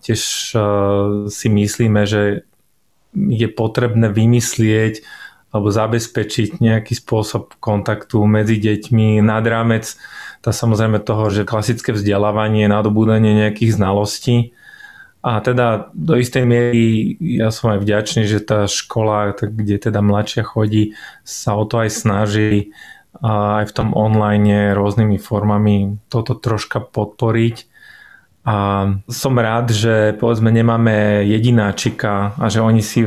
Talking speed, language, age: 125 wpm, Slovak, 20-39